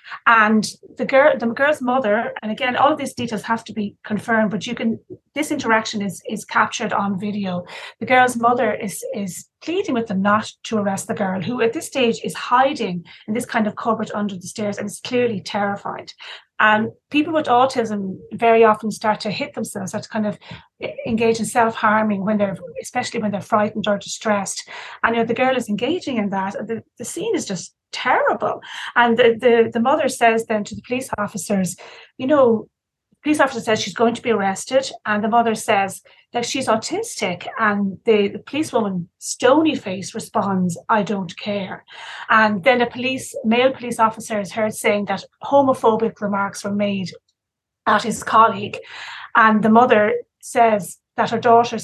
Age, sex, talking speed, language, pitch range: 30-49, female, 180 wpm, English, 210-245 Hz